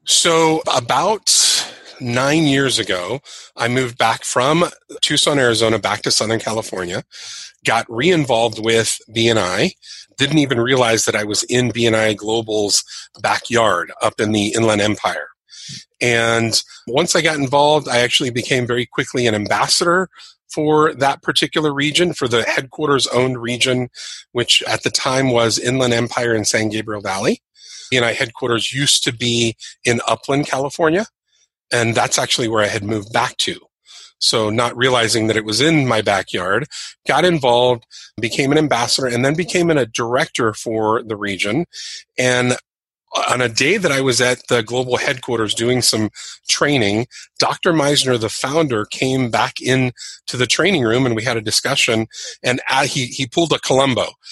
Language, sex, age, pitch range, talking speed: English, male, 30-49, 115-140 Hz, 155 wpm